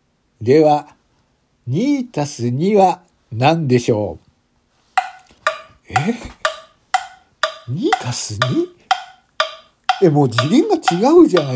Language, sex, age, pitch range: Japanese, male, 60-79, 115-180 Hz